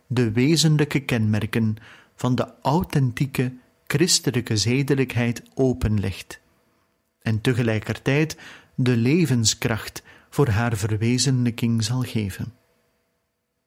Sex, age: male, 40-59